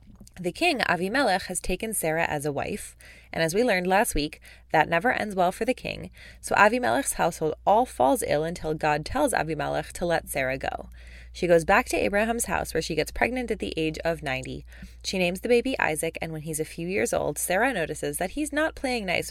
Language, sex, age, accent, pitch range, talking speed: English, female, 20-39, American, 150-210 Hz, 220 wpm